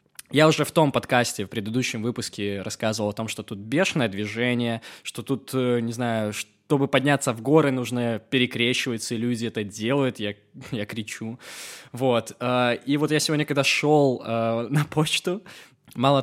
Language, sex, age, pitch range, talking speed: Russian, male, 20-39, 110-135 Hz, 155 wpm